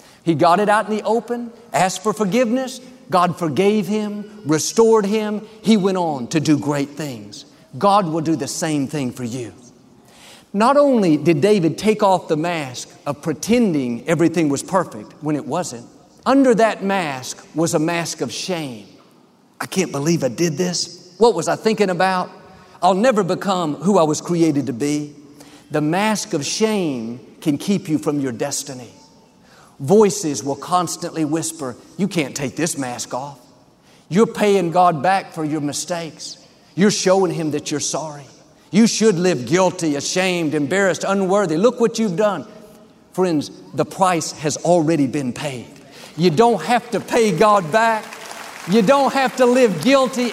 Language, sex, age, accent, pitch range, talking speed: English, male, 50-69, American, 150-215 Hz, 165 wpm